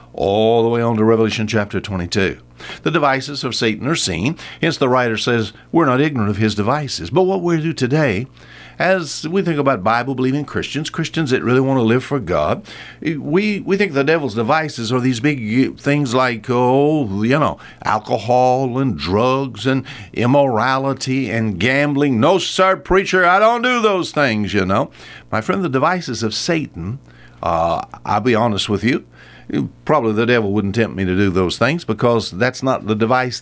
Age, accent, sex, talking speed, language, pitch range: 60-79, American, male, 180 wpm, English, 110-145 Hz